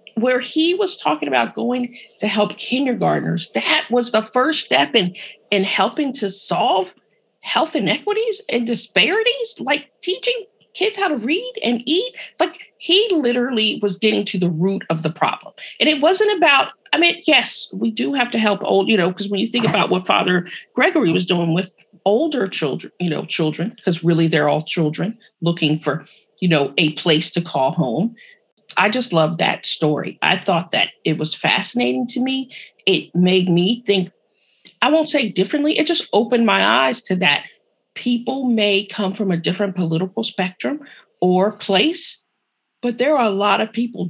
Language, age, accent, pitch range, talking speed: English, 40-59, American, 180-260 Hz, 180 wpm